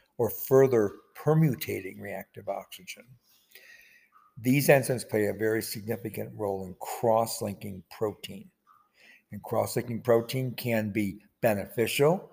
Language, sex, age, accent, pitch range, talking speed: English, male, 60-79, American, 105-125 Hz, 100 wpm